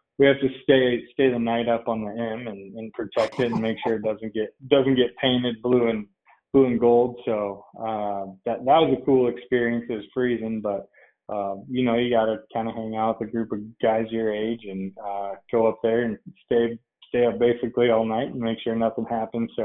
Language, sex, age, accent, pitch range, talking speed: English, male, 20-39, American, 110-125 Hz, 225 wpm